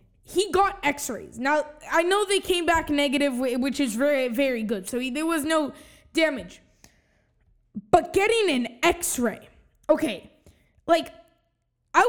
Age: 20-39